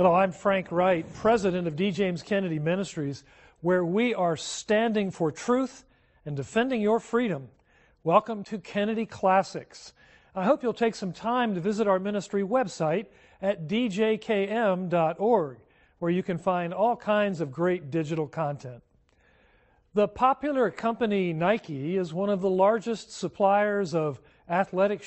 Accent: American